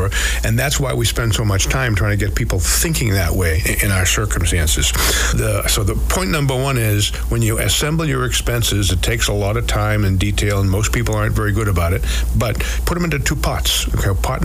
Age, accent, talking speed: 50-69, American, 225 wpm